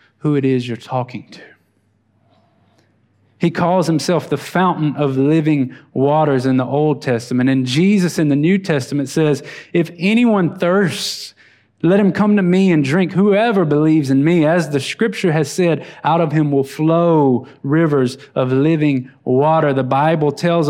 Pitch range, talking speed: 150-185 Hz, 160 wpm